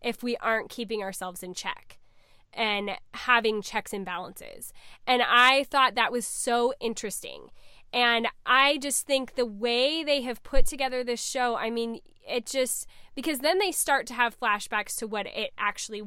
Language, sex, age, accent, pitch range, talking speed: English, female, 10-29, American, 220-265 Hz, 170 wpm